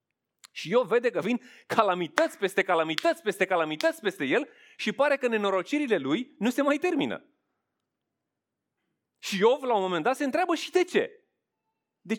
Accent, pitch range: native, 140-220 Hz